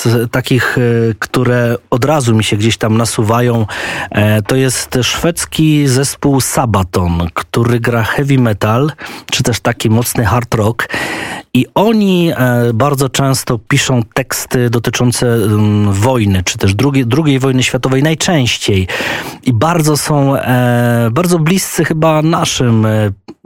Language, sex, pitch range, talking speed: Polish, male, 115-135 Hz, 120 wpm